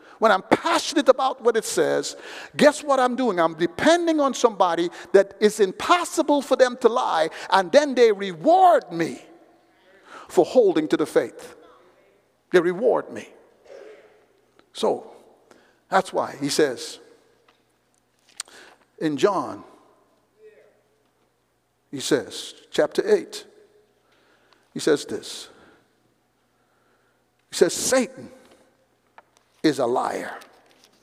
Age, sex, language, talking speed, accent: 50-69, male, English, 105 wpm, American